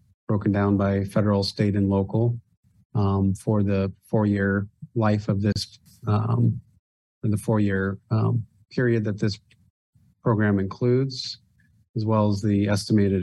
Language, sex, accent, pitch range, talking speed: English, male, American, 100-115 Hz, 140 wpm